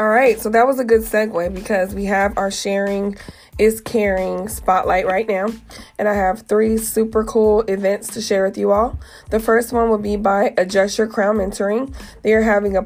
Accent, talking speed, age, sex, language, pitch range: American, 205 wpm, 20-39, female, English, 195-220 Hz